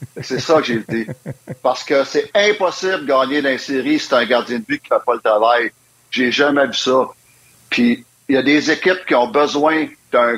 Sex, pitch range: male, 120-155 Hz